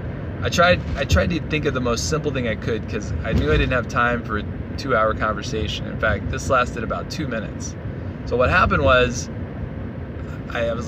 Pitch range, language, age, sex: 105-120 Hz, English, 20-39, male